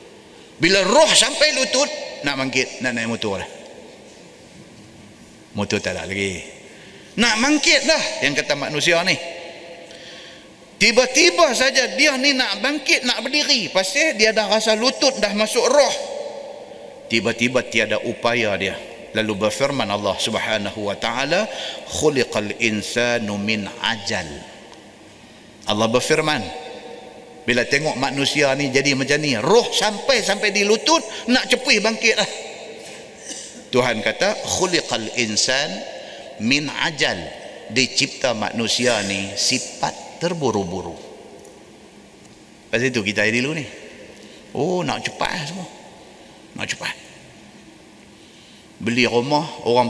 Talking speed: 105 wpm